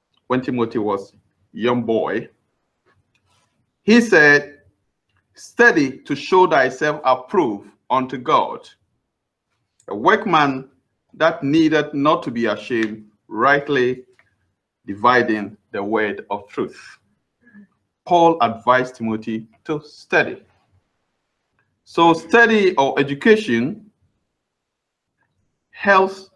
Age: 50-69